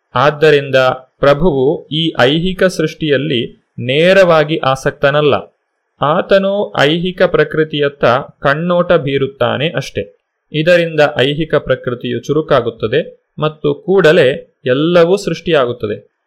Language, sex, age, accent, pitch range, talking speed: Kannada, male, 30-49, native, 140-175 Hz, 75 wpm